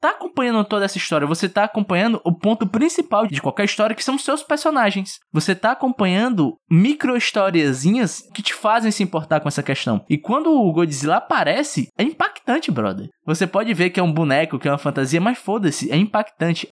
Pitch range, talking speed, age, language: 140-215 Hz, 195 wpm, 20-39, Portuguese